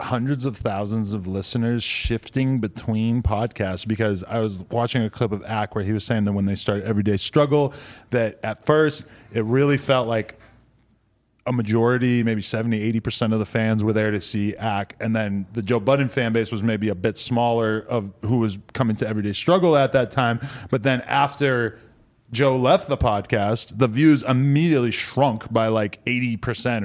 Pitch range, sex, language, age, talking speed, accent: 110-130 Hz, male, English, 20-39, 185 wpm, American